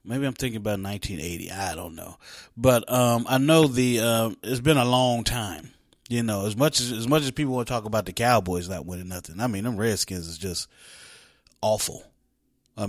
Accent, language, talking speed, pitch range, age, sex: American, English, 220 wpm, 105-125 Hz, 30-49, male